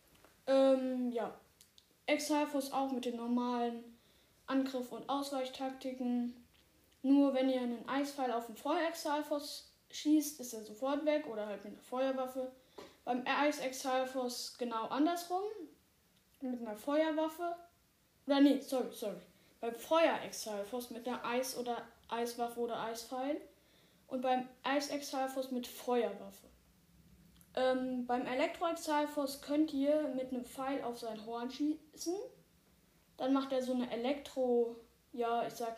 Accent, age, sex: German, 10-29, female